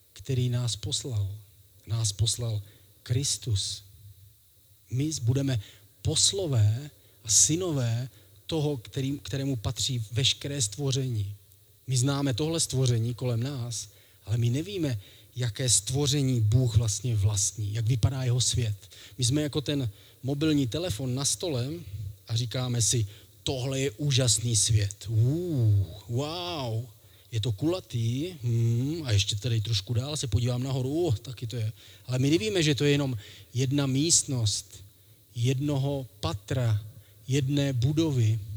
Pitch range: 105-140 Hz